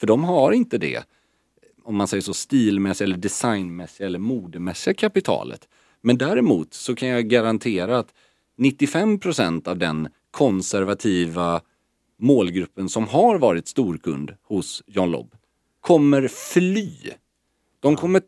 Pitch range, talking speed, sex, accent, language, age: 90-135 Hz, 125 wpm, male, Swedish, English, 40-59